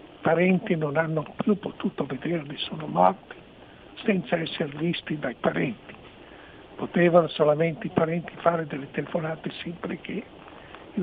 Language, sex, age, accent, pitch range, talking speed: Italian, male, 60-79, native, 150-175 Hz, 125 wpm